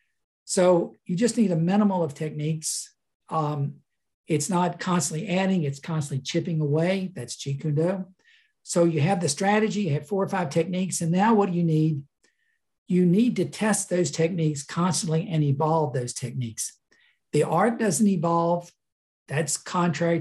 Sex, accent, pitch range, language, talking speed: male, American, 155-195 Hz, English, 165 wpm